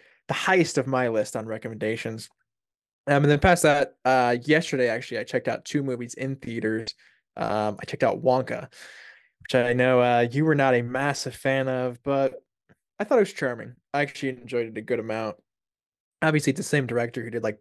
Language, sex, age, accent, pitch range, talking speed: English, male, 20-39, American, 115-135 Hz, 200 wpm